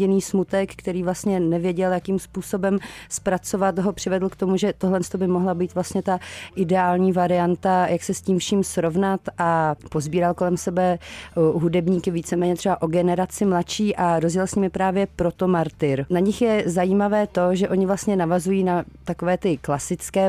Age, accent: 30-49, native